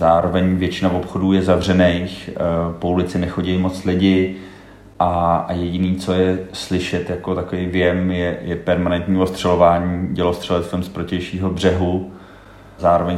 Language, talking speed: Czech, 130 wpm